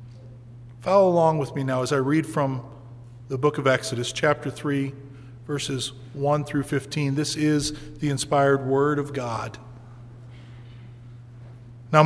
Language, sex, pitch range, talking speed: English, male, 120-170 Hz, 135 wpm